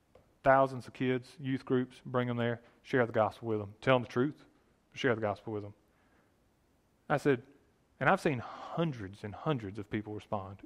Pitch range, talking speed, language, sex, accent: 130-200 Hz, 185 wpm, English, male, American